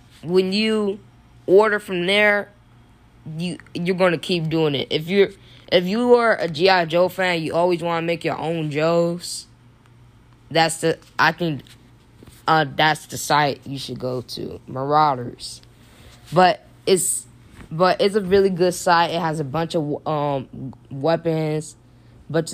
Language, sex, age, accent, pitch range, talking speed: English, female, 10-29, American, 120-175 Hz, 150 wpm